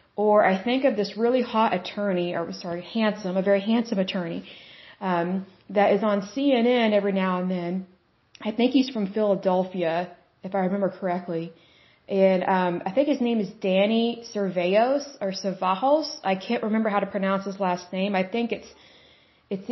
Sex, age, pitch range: female, 20-39, 185-220 Hz